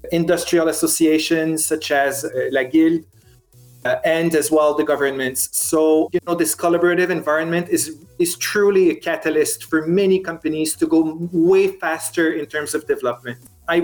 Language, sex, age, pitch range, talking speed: English, male, 30-49, 150-170 Hz, 155 wpm